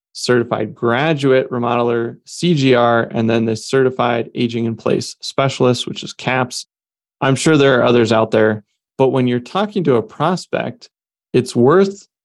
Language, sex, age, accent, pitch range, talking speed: English, male, 20-39, American, 115-135 Hz, 150 wpm